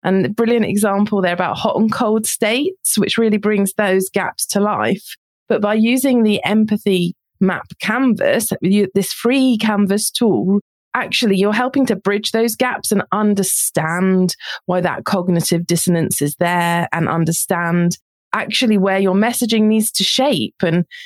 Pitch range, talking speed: 185-230 Hz, 150 wpm